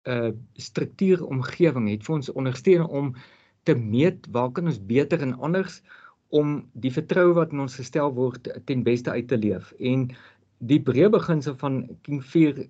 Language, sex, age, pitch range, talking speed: English, male, 50-69, 125-165 Hz, 165 wpm